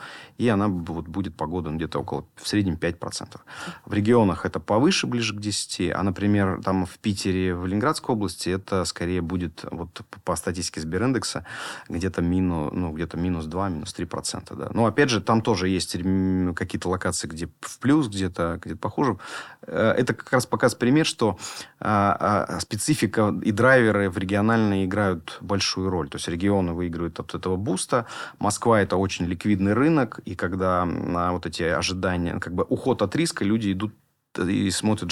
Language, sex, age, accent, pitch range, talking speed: Russian, male, 30-49, native, 85-105 Hz, 165 wpm